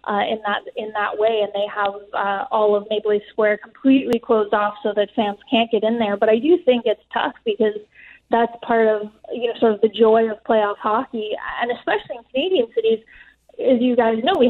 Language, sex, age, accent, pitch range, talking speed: English, female, 20-39, American, 210-240 Hz, 225 wpm